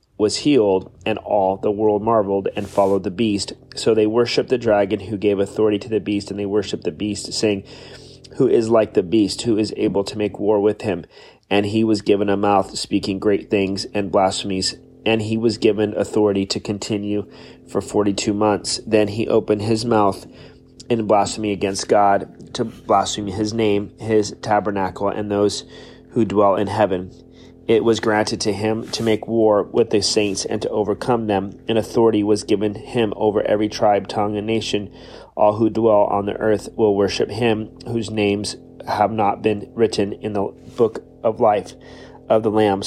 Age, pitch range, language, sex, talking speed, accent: 30-49, 100-110 Hz, English, male, 185 wpm, American